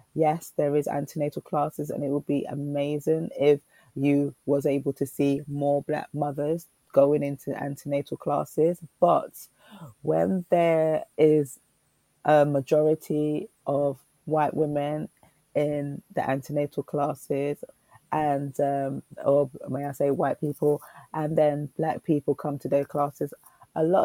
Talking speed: 135 wpm